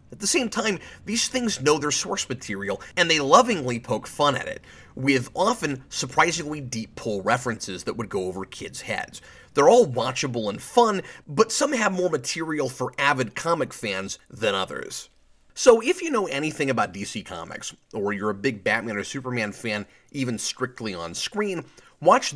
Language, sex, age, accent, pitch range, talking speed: English, male, 30-49, American, 110-180 Hz, 175 wpm